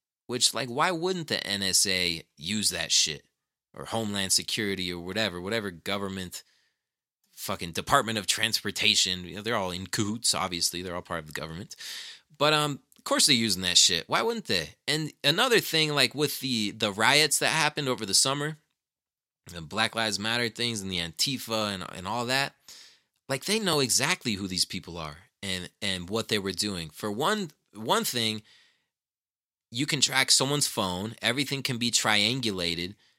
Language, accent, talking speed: English, American, 175 wpm